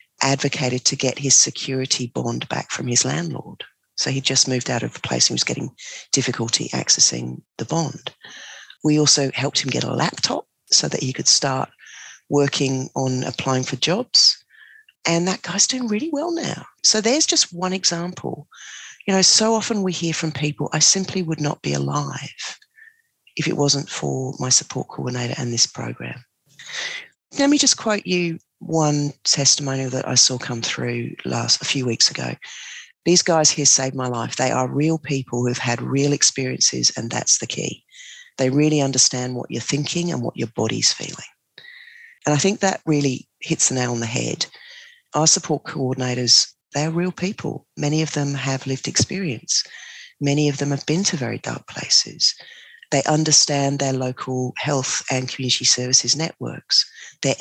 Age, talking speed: 40-59, 175 wpm